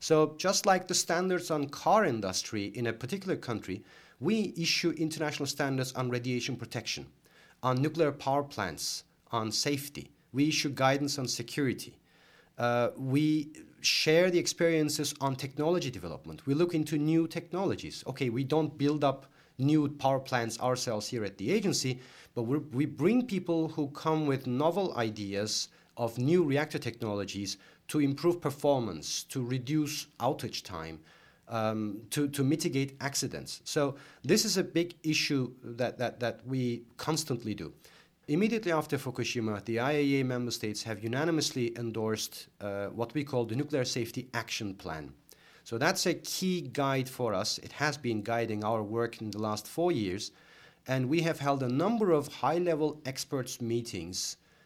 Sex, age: male, 40-59